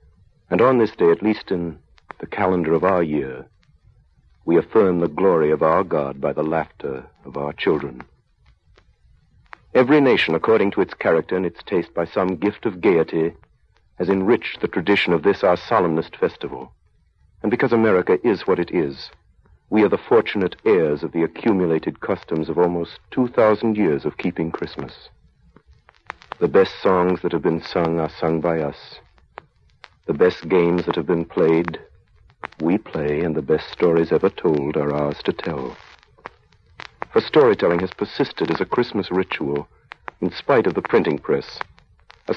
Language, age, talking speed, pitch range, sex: French, 60-79, 165 wpm, 80-110 Hz, male